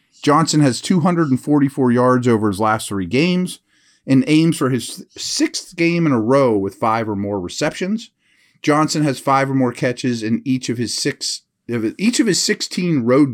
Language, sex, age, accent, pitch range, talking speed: English, male, 40-59, American, 110-155 Hz, 175 wpm